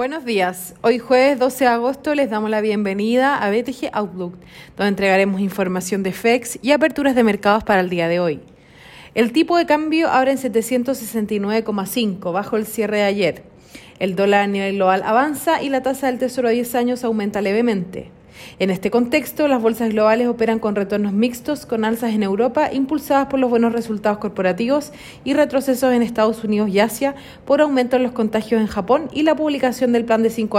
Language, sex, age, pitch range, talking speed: Spanish, female, 40-59, 205-260 Hz, 190 wpm